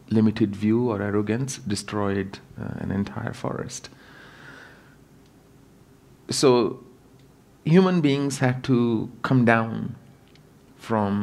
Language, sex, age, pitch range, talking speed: English, male, 40-59, 100-125 Hz, 90 wpm